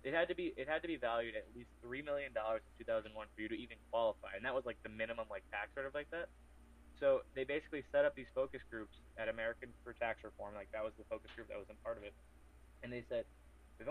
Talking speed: 260 wpm